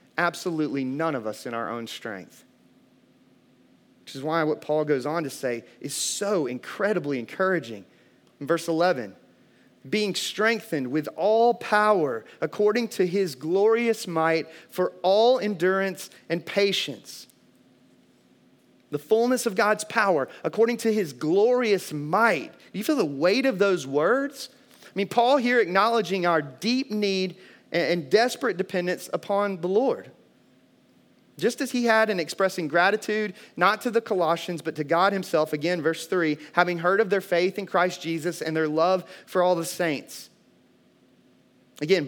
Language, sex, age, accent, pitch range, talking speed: English, male, 30-49, American, 155-205 Hz, 150 wpm